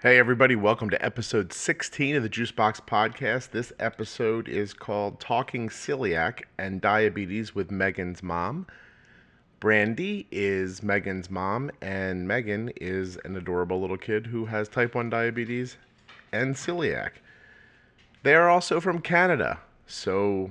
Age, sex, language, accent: 30-49, male, English, American